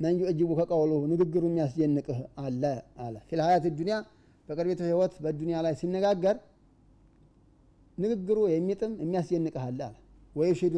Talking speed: 115 wpm